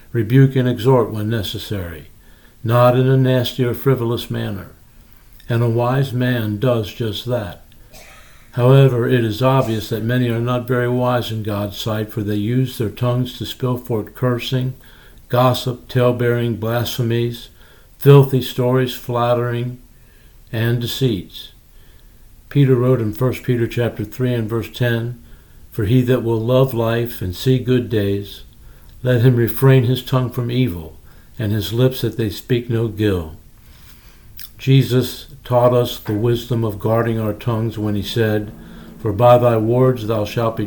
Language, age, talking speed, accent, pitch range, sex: English, 60-79, 150 wpm, American, 110-125 Hz, male